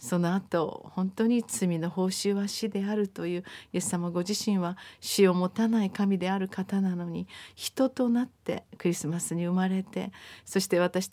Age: 40-59